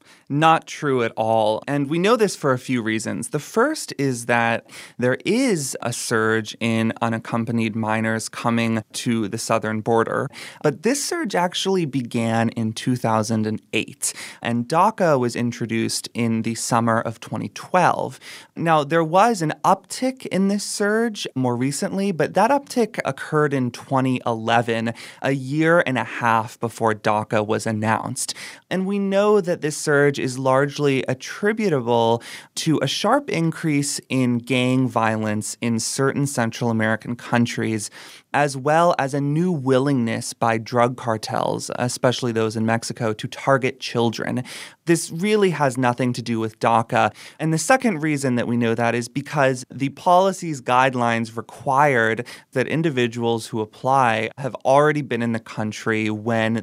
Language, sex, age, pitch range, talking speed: English, male, 20-39, 115-150 Hz, 145 wpm